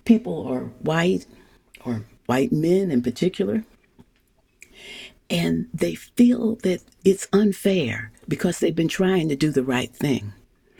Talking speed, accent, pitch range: 130 wpm, American, 160-220 Hz